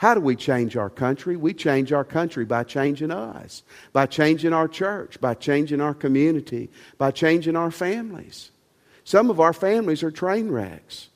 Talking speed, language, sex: 170 wpm, English, male